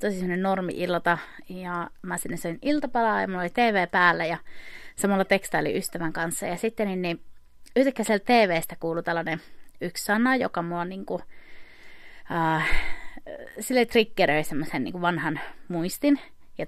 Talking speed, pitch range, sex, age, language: 120 wpm, 165-210 Hz, female, 30-49, Finnish